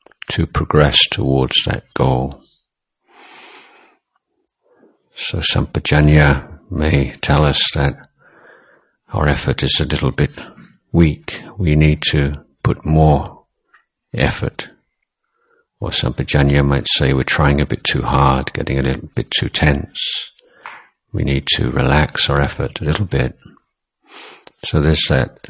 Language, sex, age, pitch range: Thai, male, 60-79, 70-75 Hz